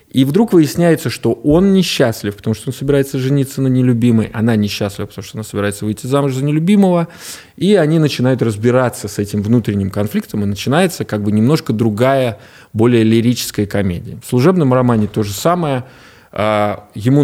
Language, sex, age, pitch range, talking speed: Russian, male, 20-39, 105-135 Hz, 165 wpm